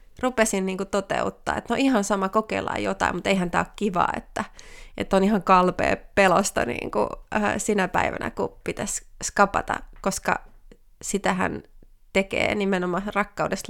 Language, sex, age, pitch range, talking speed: Finnish, female, 30-49, 190-230 Hz, 130 wpm